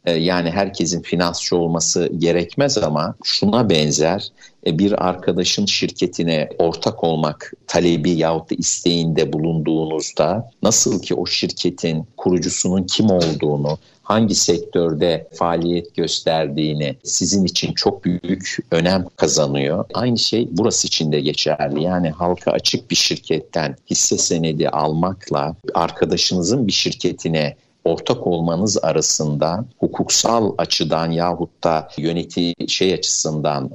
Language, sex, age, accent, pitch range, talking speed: Turkish, male, 50-69, native, 80-90 Hz, 110 wpm